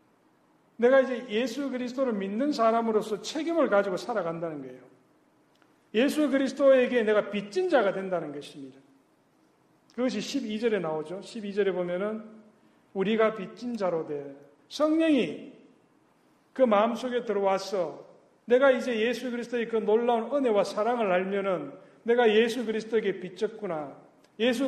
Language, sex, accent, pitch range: Korean, male, native, 195-255 Hz